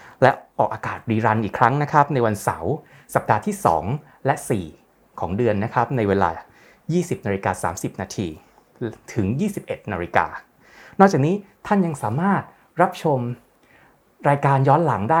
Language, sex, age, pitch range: English, male, 20-39, 110-150 Hz